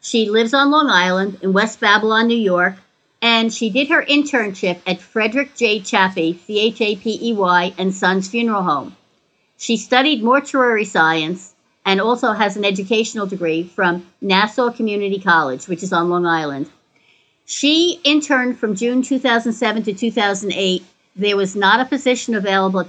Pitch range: 185-235 Hz